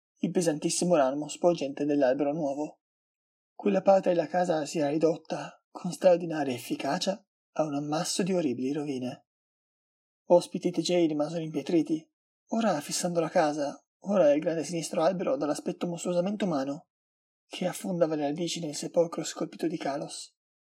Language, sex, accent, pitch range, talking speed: Italian, male, native, 155-185 Hz, 140 wpm